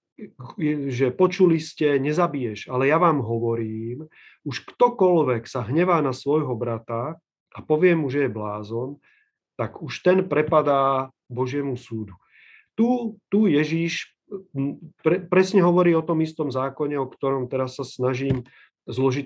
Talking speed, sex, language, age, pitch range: 135 wpm, male, Slovak, 40-59, 125-155 Hz